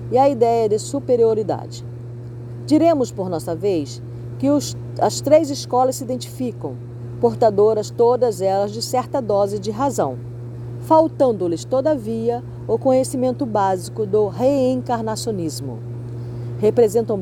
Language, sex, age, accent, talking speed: Portuguese, female, 40-59, Brazilian, 110 wpm